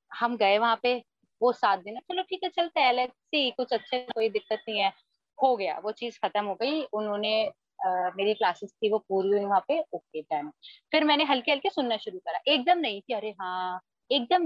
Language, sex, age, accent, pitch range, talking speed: Hindi, female, 20-39, native, 195-285 Hz, 205 wpm